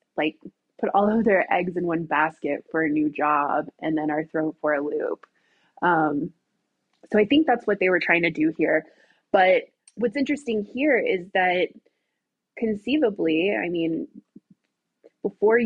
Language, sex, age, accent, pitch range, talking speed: English, female, 20-39, American, 155-210 Hz, 160 wpm